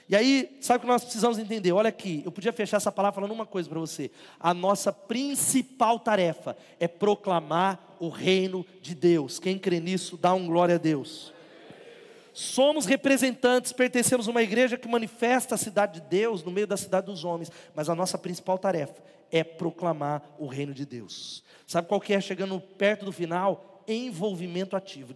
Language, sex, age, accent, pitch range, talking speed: Portuguese, male, 40-59, Brazilian, 180-240 Hz, 185 wpm